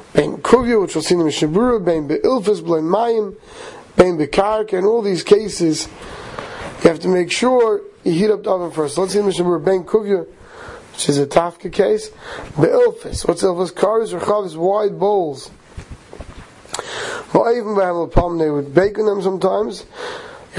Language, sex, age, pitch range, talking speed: English, male, 30-49, 175-225 Hz, 190 wpm